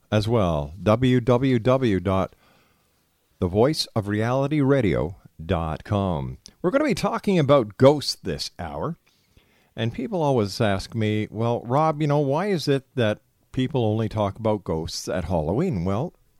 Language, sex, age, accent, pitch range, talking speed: English, male, 50-69, American, 90-130 Hz, 120 wpm